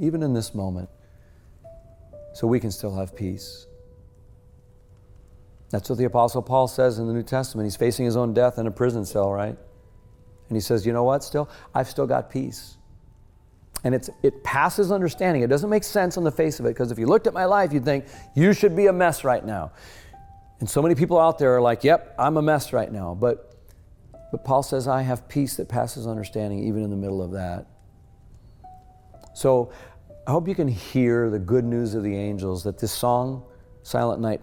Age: 40-59